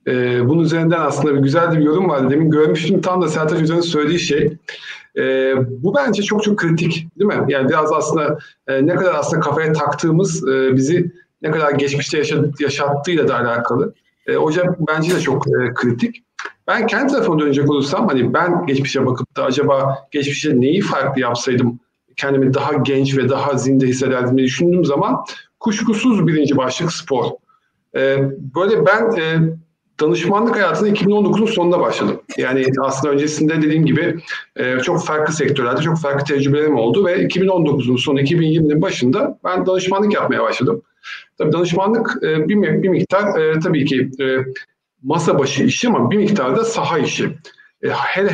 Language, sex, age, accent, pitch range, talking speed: Turkish, male, 50-69, native, 140-175 Hz, 155 wpm